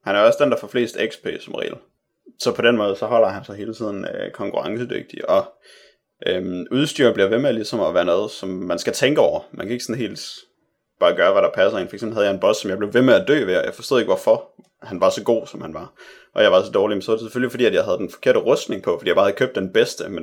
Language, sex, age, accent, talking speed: Danish, male, 30-49, native, 295 wpm